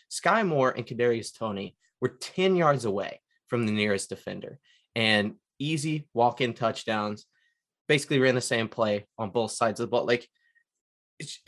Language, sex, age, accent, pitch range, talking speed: English, male, 20-39, American, 115-145 Hz, 155 wpm